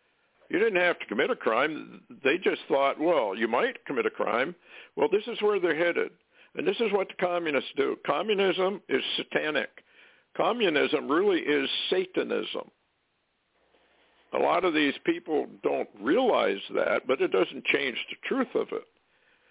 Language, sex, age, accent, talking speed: English, male, 60-79, American, 160 wpm